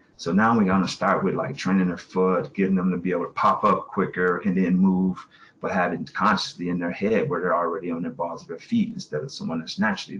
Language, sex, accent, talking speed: English, male, American, 245 wpm